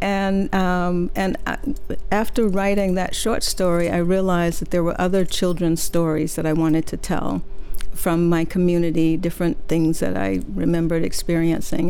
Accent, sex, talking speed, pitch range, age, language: American, female, 150 wpm, 165-190 Hz, 60-79, English